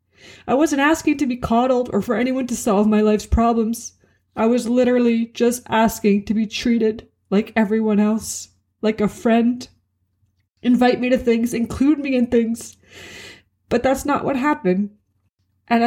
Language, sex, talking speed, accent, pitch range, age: English, female, 160 wpm, American, 190-235 Hz, 20-39